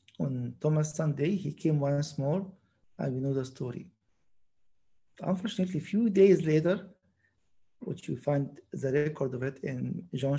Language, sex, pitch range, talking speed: English, male, 135-185 Hz, 150 wpm